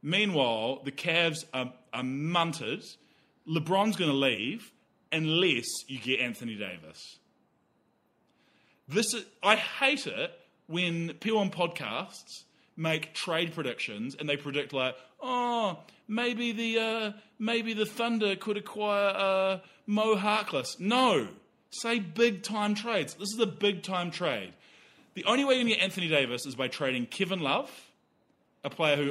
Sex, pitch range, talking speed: male, 120-195 Hz, 140 wpm